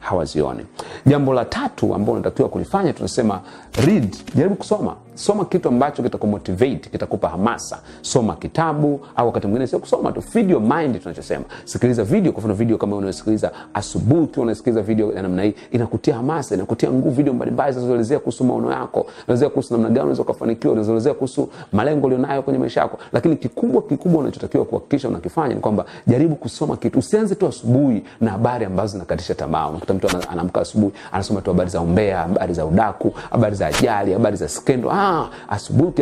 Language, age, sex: Swahili, 40-59, male